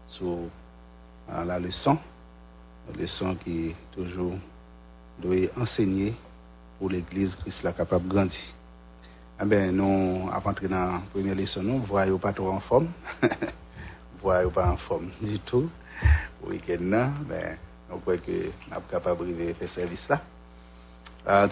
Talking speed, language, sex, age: 150 wpm, English, male, 60-79